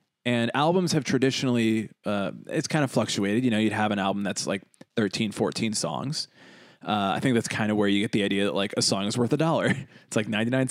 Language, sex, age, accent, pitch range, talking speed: English, male, 20-39, American, 115-165 Hz, 235 wpm